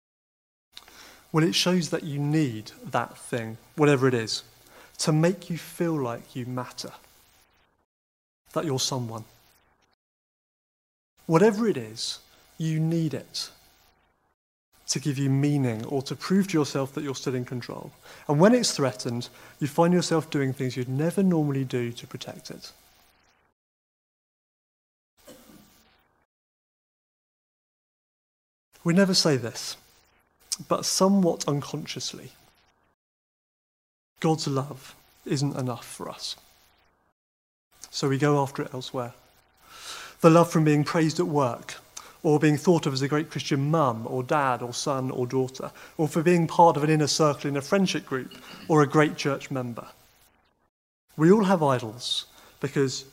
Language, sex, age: English, male, 30-49